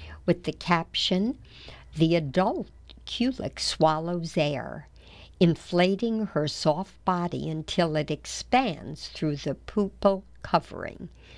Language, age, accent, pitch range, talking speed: English, 60-79, American, 155-200 Hz, 100 wpm